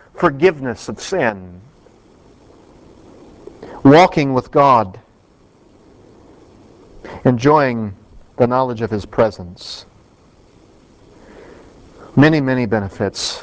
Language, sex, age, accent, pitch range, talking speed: English, male, 40-59, American, 105-145 Hz, 65 wpm